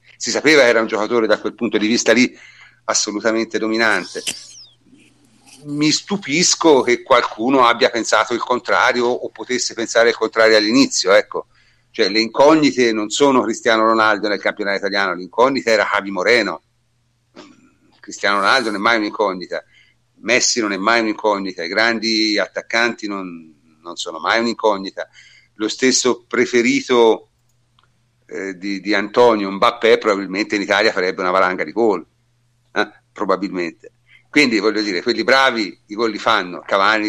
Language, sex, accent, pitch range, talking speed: Italian, male, native, 105-120 Hz, 145 wpm